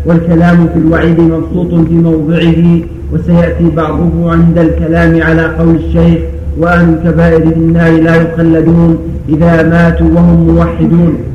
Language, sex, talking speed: Arabic, male, 115 wpm